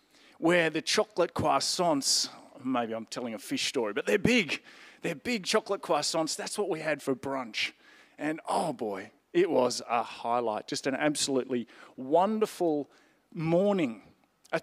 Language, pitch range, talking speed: English, 135-190 Hz, 150 wpm